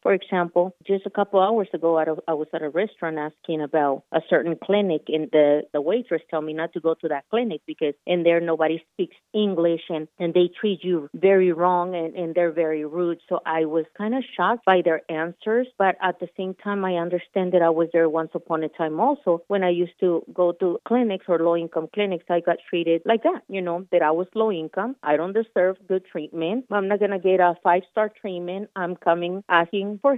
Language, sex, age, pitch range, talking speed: English, female, 30-49, 165-200 Hz, 225 wpm